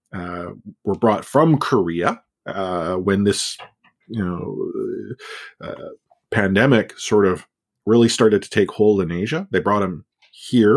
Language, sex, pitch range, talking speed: English, male, 95-130 Hz, 140 wpm